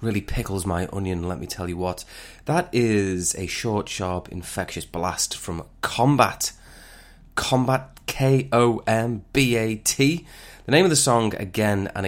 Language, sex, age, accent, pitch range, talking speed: English, male, 20-39, British, 90-110 Hz, 135 wpm